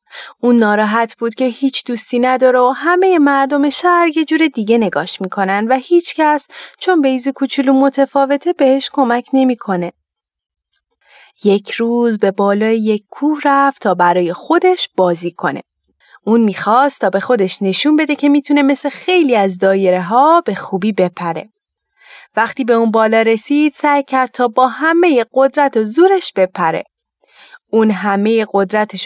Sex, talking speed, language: female, 155 wpm, Persian